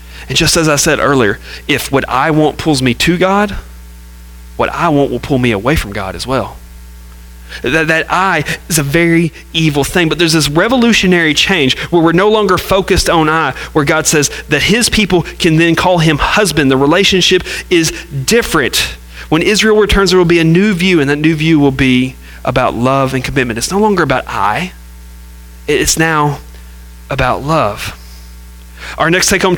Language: English